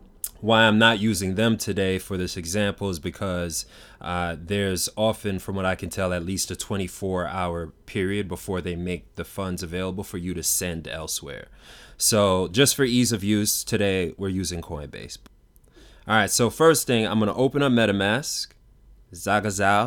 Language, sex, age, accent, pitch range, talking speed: English, male, 20-39, American, 95-115 Hz, 170 wpm